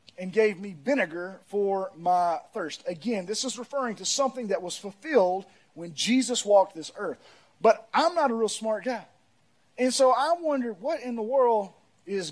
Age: 30-49